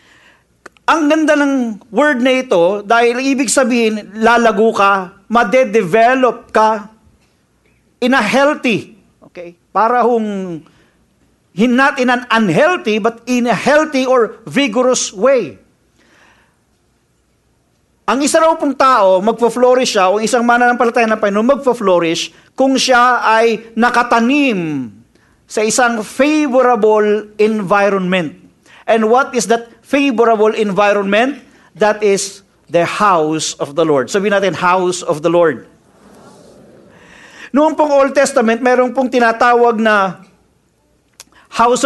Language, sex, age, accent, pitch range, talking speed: English, male, 50-69, Filipino, 200-250 Hz, 115 wpm